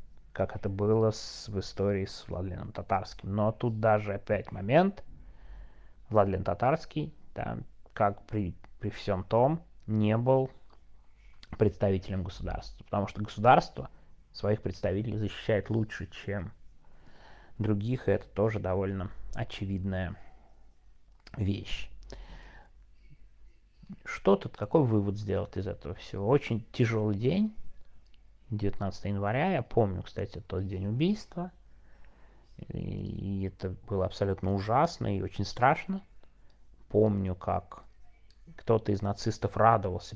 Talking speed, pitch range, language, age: 110 wpm, 95-110 Hz, Russian, 30-49